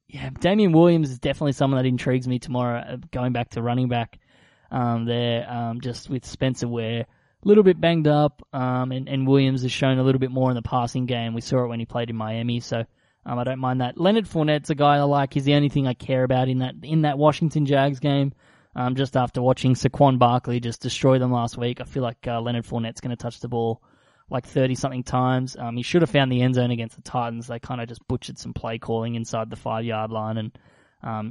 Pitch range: 120-140 Hz